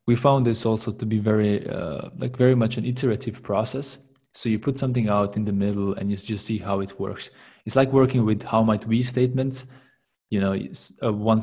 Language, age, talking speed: English, 20-39, 210 wpm